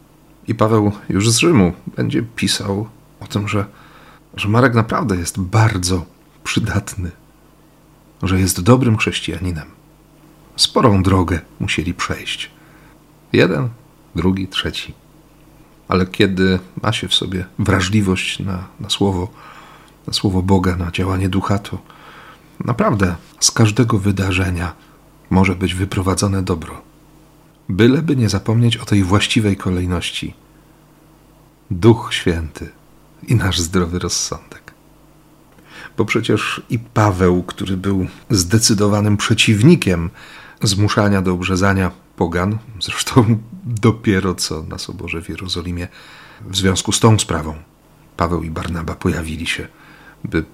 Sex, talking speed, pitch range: male, 110 wpm, 90-115 Hz